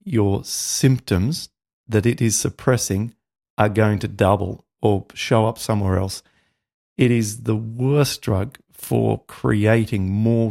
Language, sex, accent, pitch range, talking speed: English, male, Australian, 110-145 Hz, 130 wpm